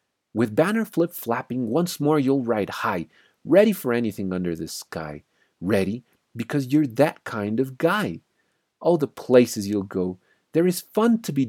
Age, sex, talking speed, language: 40-59, male, 165 wpm, English